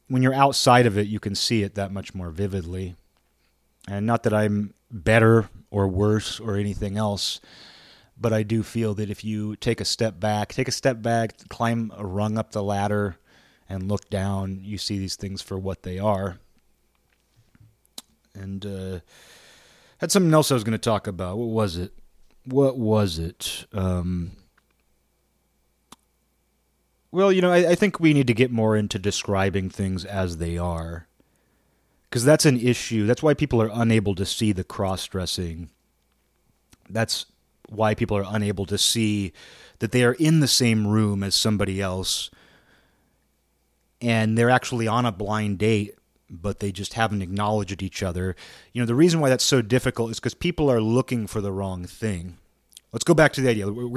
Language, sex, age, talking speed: English, male, 30-49, 175 wpm